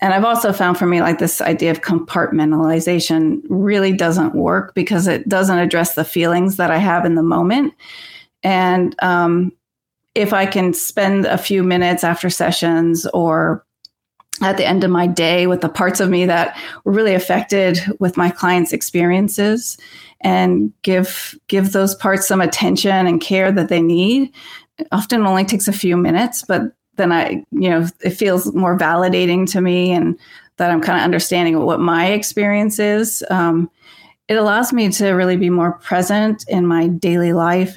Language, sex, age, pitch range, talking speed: English, female, 30-49, 175-205 Hz, 175 wpm